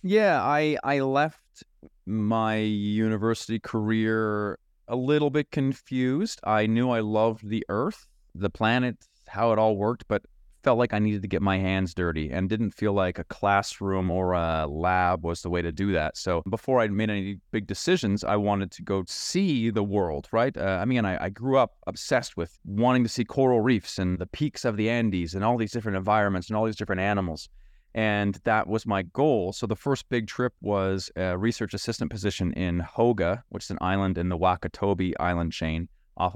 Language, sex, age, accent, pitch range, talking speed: English, male, 30-49, American, 90-110 Hz, 200 wpm